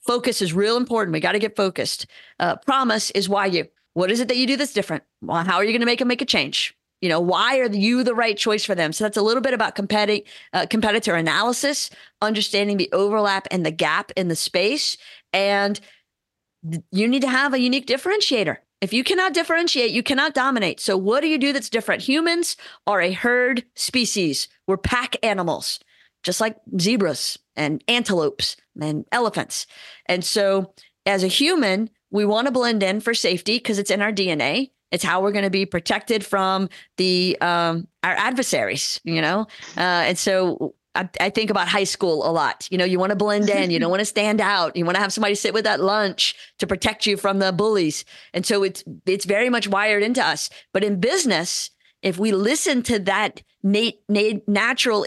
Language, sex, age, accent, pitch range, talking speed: English, female, 40-59, American, 190-235 Hz, 200 wpm